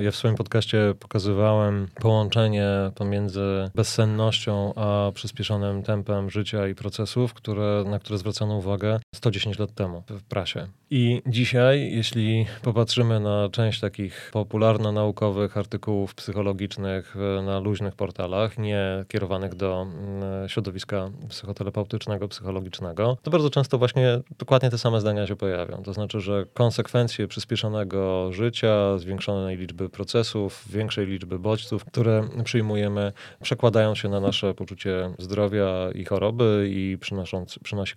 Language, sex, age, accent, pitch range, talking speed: Polish, male, 30-49, native, 100-115 Hz, 125 wpm